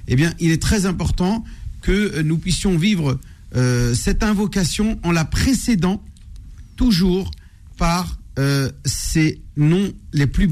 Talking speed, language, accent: 130 wpm, French, French